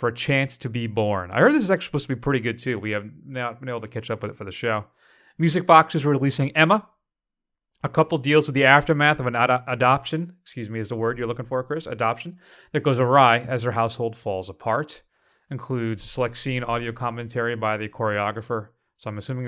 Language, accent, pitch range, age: English, American, 115-145 Hz, 30-49